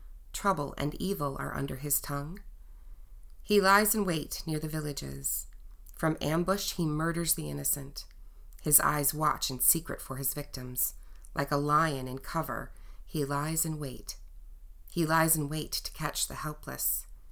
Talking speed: 155 wpm